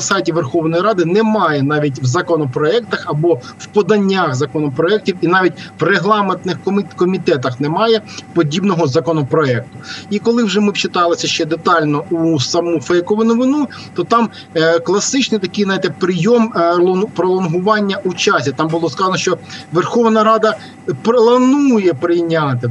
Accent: native